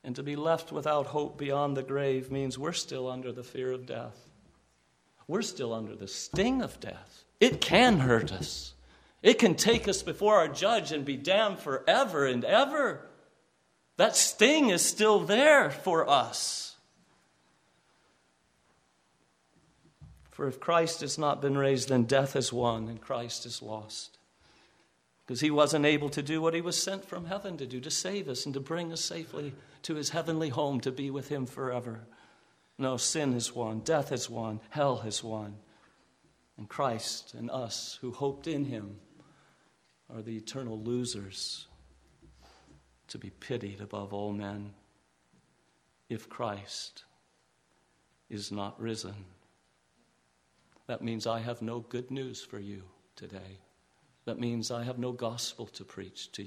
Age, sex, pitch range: 50-69, male, 95-140 Hz